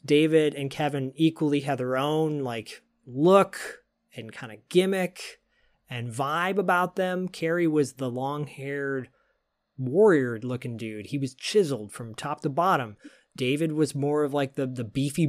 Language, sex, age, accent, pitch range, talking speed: English, male, 30-49, American, 125-155 Hz, 150 wpm